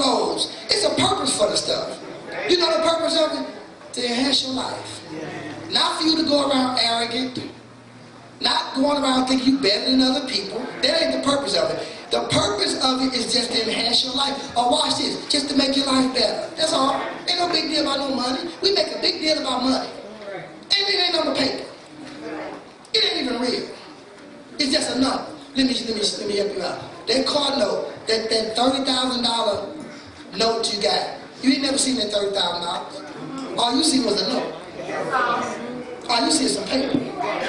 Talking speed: 190 wpm